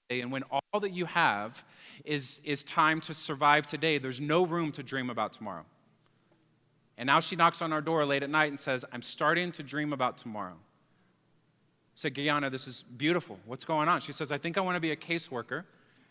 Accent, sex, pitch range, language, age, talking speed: American, male, 130-160 Hz, English, 30-49, 205 wpm